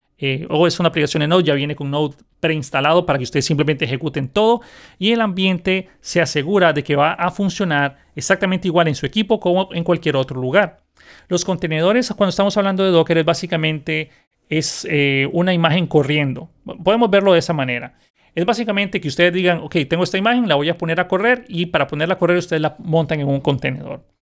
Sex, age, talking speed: male, 40-59, 205 wpm